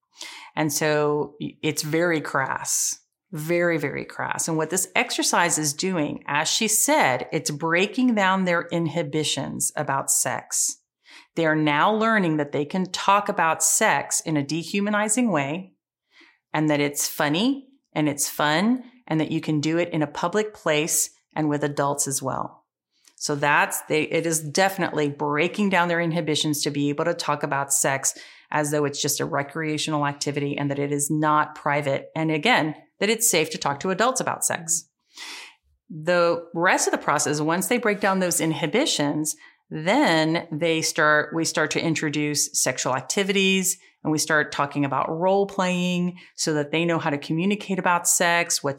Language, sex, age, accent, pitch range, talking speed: English, female, 40-59, American, 150-180 Hz, 170 wpm